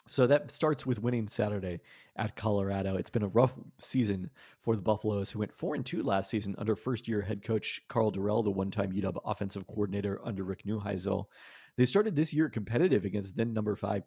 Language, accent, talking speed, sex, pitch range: English, American, 190 wpm, male, 100-115 Hz